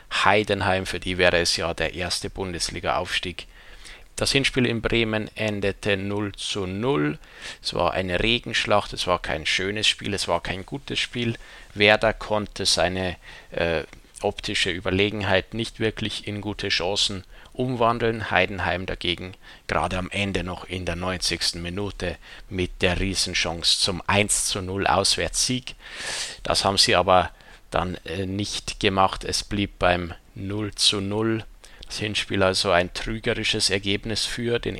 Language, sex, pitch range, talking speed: German, male, 90-110 Hz, 140 wpm